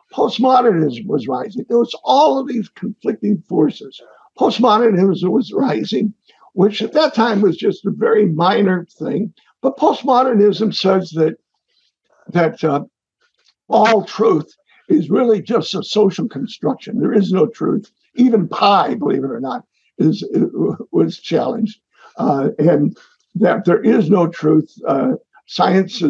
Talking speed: 140 wpm